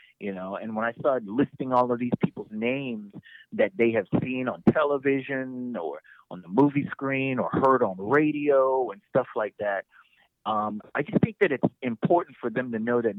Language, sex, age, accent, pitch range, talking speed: English, male, 30-49, American, 105-130 Hz, 200 wpm